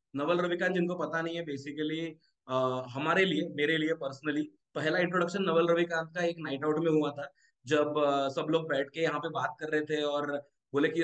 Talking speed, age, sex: 210 wpm, 20-39, male